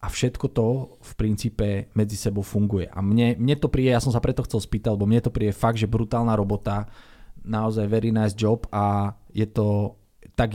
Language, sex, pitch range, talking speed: Slovak, male, 105-125 Hz, 200 wpm